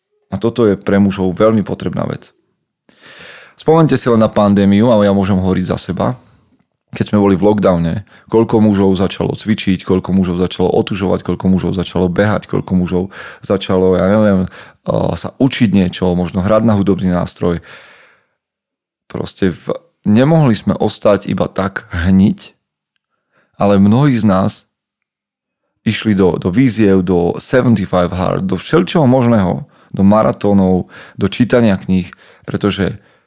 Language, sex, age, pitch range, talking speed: Slovak, male, 30-49, 95-115 Hz, 140 wpm